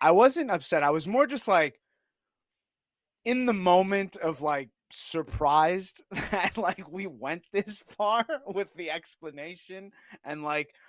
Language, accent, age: English, American, 30-49